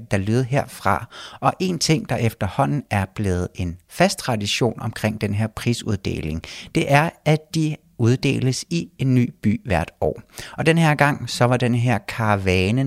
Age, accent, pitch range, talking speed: 60-79, native, 105-140 Hz, 175 wpm